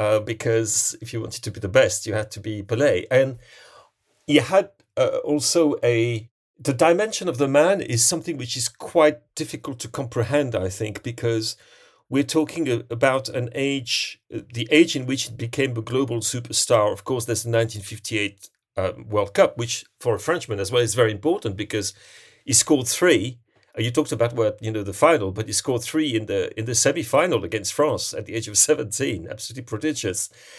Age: 40-59